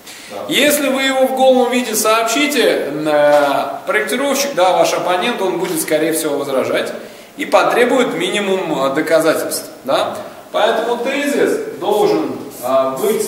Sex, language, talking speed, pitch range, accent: male, Russian, 115 wpm, 175-275 Hz, native